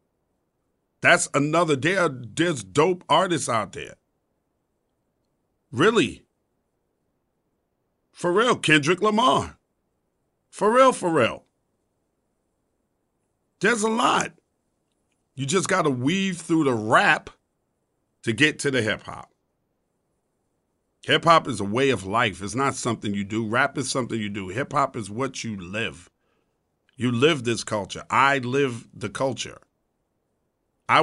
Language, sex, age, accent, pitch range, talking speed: English, male, 50-69, American, 110-140 Hz, 125 wpm